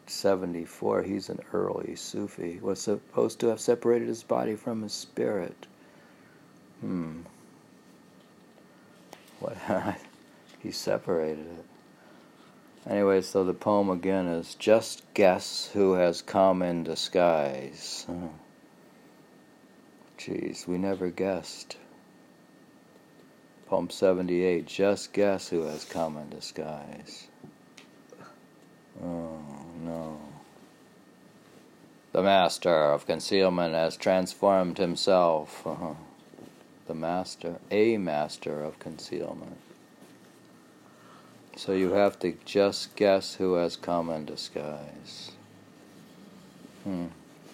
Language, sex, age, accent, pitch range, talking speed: English, male, 60-79, American, 85-105 Hz, 95 wpm